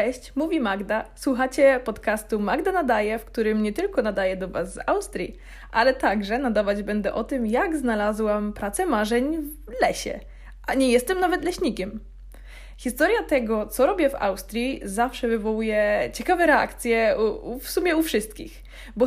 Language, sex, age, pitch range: Polish, female, 20-39, 215-280 Hz